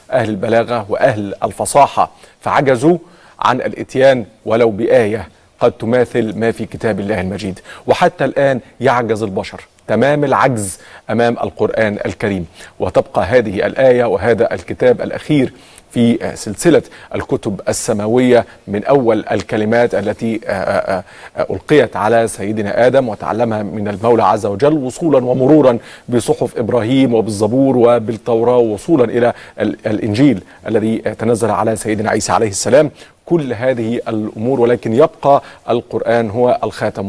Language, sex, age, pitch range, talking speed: Arabic, male, 40-59, 110-130 Hz, 115 wpm